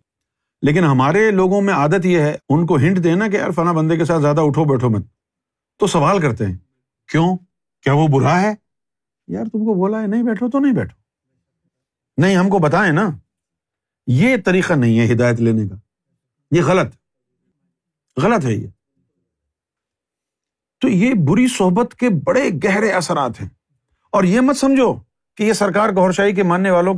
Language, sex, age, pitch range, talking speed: Urdu, male, 50-69, 140-220 Hz, 175 wpm